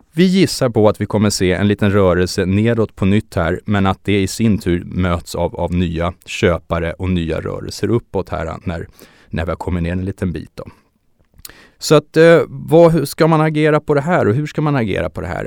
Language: Swedish